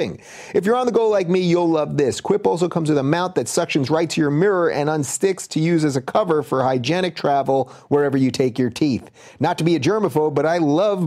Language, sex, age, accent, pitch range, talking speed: English, male, 30-49, American, 135-190 Hz, 245 wpm